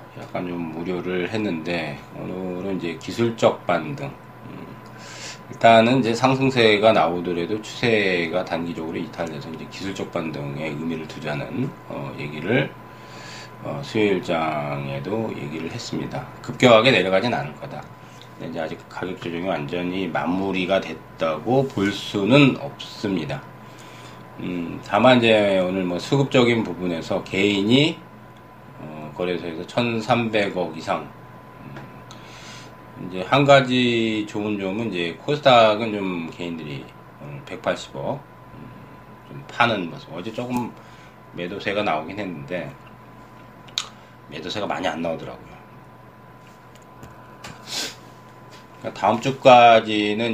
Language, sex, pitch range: Korean, male, 85-115 Hz